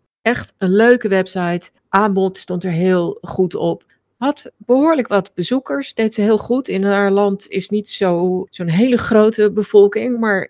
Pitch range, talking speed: 165-210 Hz, 160 wpm